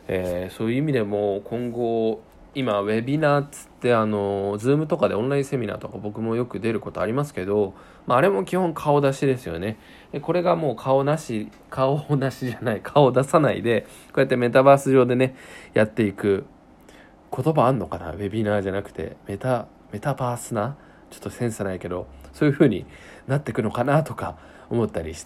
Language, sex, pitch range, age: Japanese, male, 105-150 Hz, 20-39